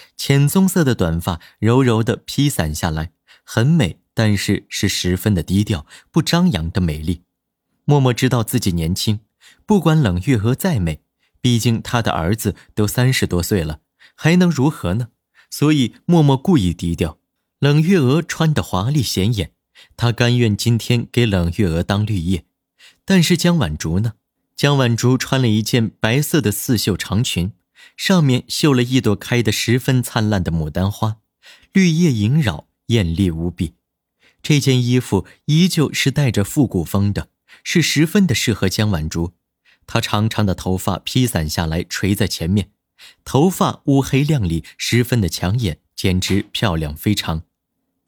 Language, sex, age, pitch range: Chinese, male, 30-49, 90-135 Hz